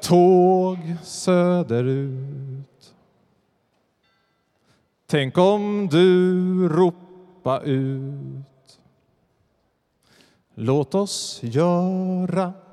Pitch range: 130-170 Hz